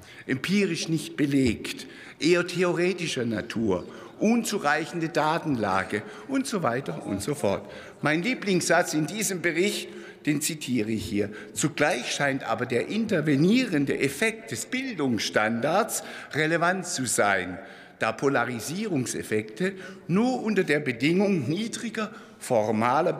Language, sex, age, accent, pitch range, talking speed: German, male, 60-79, German, 150-225 Hz, 110 wpm